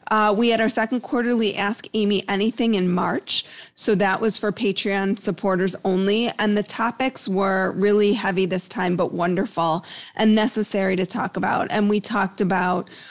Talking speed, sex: 170 wpm, female